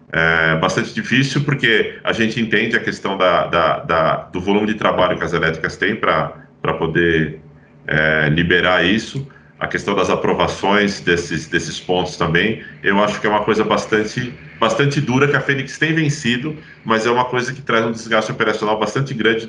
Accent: Brazilian